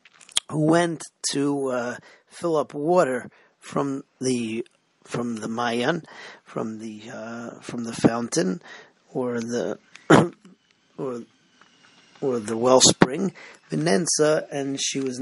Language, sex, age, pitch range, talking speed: English, male, 40-59, 125-150 Hz, 110 wpm